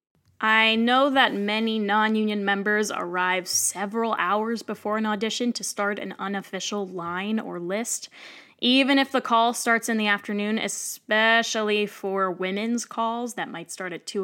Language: English